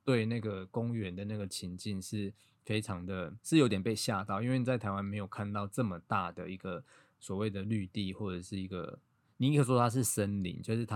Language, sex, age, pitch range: Chinese, male, 20-39, 95-115 Hz